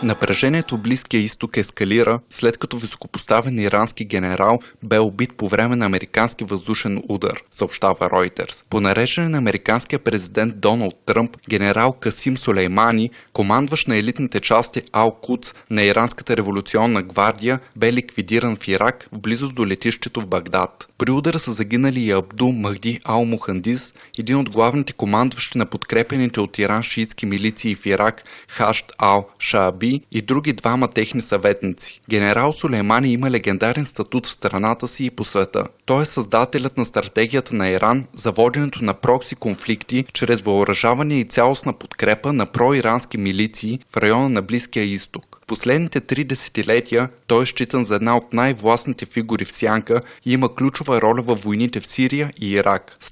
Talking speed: 155 wpm